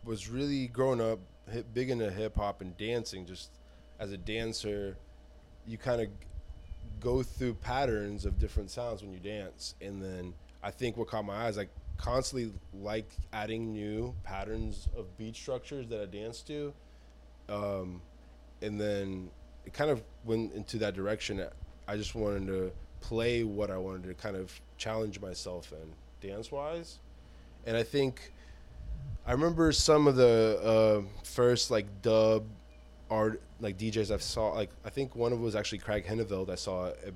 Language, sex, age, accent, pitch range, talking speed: English, male, 20-39, American, 90-110 Hz, 170 wpm